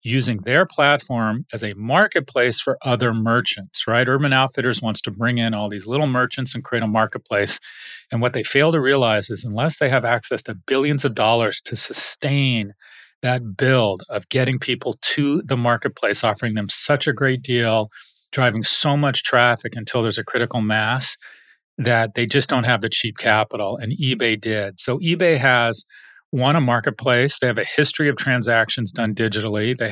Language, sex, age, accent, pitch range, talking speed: English, male, 30-49, American, 110-130 Hz, 180 wpm